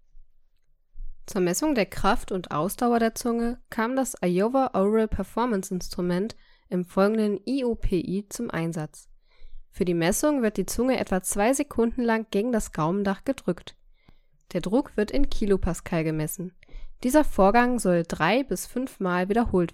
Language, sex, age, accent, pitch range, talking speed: German, female, 10-29, German, 180-250 Hz, 140 wpm